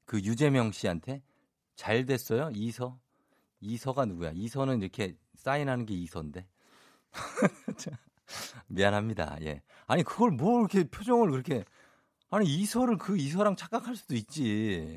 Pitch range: 95-145 Hz